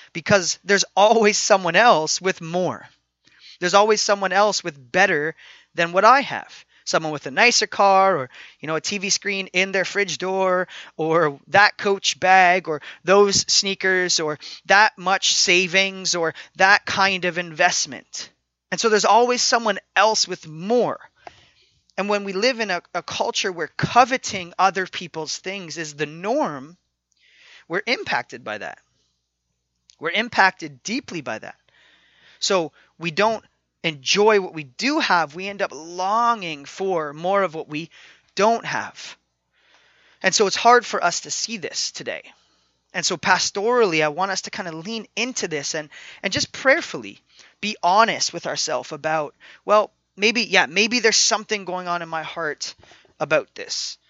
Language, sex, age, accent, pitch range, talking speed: English, male, 30-49, American, 165-205 Hz, 160 wpm